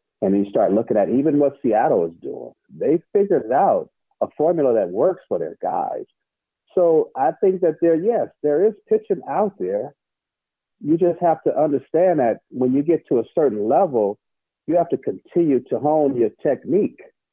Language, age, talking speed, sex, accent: English, 50-69, 180 wpm, male, American